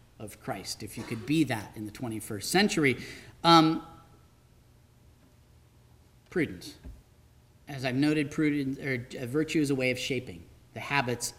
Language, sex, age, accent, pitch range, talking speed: English, male, 40-59, American, 120-160 Hz, 135 wpm